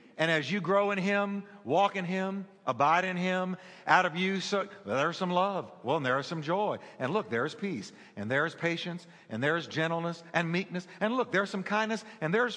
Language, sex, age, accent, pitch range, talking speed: English, male, 50-69, American, 175-235 Hz, 210 wpm